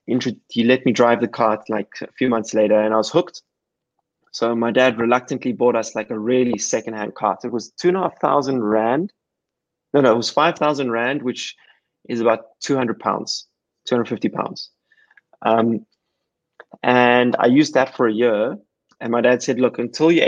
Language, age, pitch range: English, 20-39, 115-135 Hz